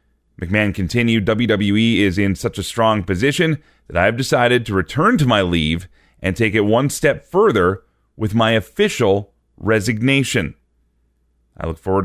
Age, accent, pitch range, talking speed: 30-49, American, 95-125 Hz, 155 wpm